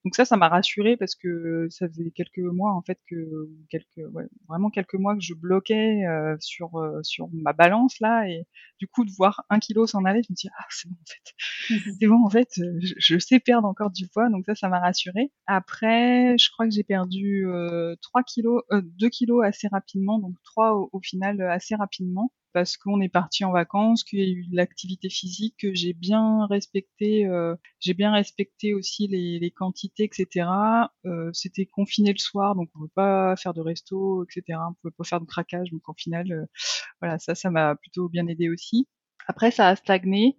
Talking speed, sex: 215 wpm, female